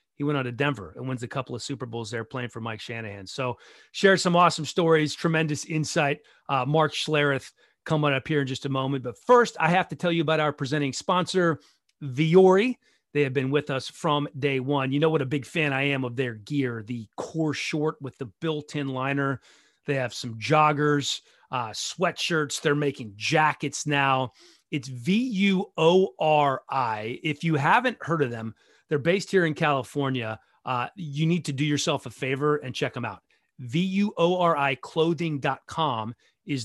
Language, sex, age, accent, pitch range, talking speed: English, male, 30-49, American, 130-165 Hz, 180 wpm